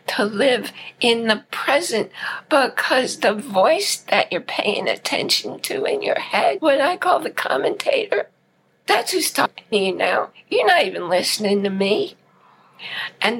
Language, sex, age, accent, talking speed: English, female, 60-79, American, 150 wpm